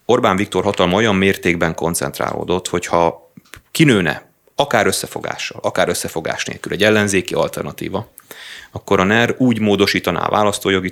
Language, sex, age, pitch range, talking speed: Hungarian, male, 30-49, 90-120 Hz, 125 wpm